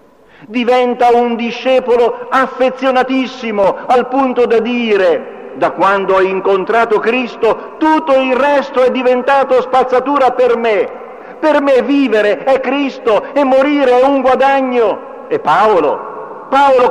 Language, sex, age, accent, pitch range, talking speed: Italian, male, 50-69, native, 190-265 Hz, 120 wpm